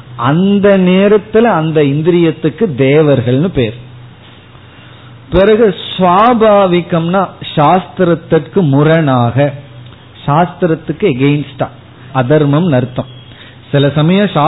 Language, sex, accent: Tamil, male, native